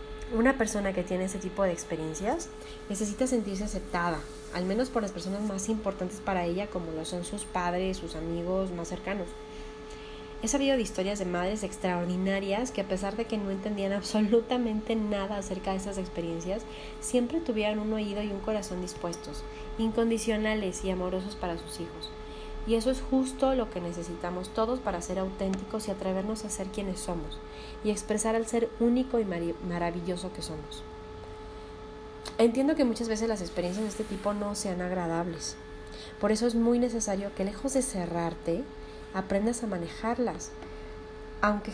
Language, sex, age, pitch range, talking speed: English, female, 30-49, 180-220 Hz, 165 wpm